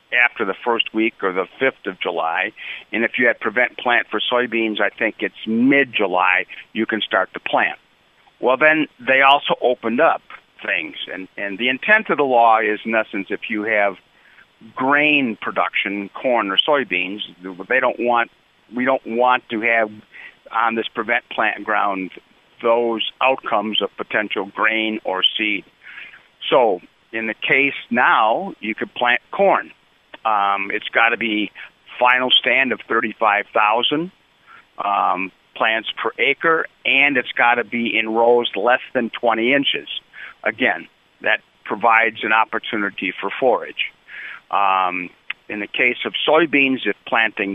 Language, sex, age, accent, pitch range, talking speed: English, male, 50-69, American, 105-125 Hz, 150 wpm